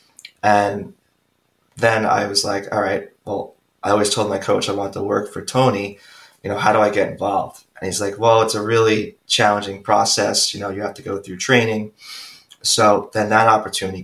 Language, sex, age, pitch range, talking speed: English, male, 20-39, 100-110 Hz, 200 wpm